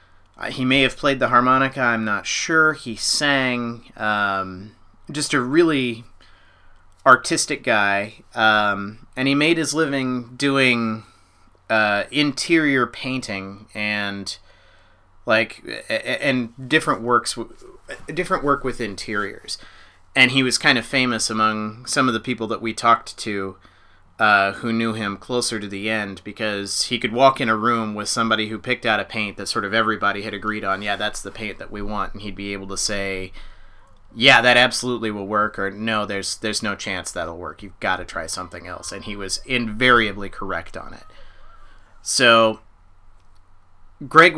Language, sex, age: English, male, 30-49